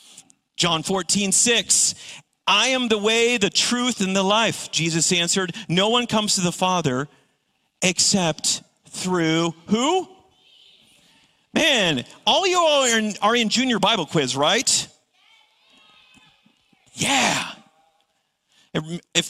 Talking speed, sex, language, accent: 110 wpm, male, English, American